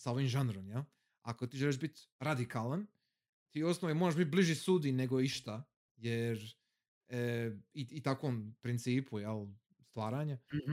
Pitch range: 115-150 Hz